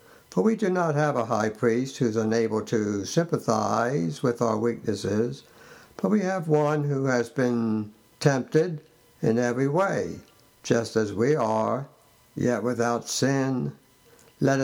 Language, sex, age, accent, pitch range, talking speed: English, male, 60-79, American, 115-155 Hz, 145 wpm